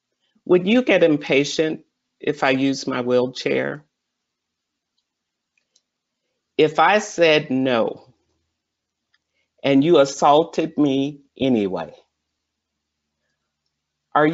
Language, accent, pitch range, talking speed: English, American, 125-165 Hz, 80 wpm